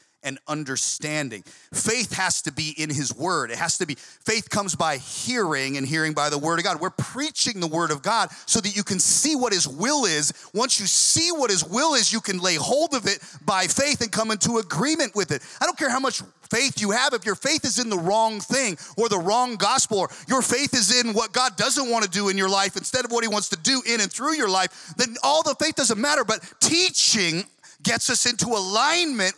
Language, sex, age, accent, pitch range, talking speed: English, male, 40-59, American, 160-245 Hz, 240 wpm